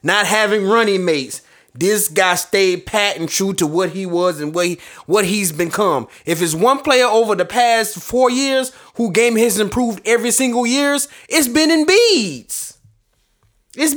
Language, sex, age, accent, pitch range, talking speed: English, male, 30-49, American, 180-260 Hz, 170 wpm